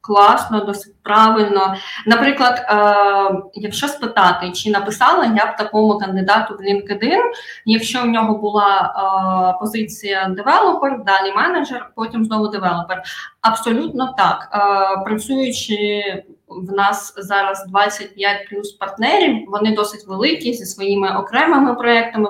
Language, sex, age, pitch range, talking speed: Ukrainian, female, 20-39, 200-240 Hz, 120 wpm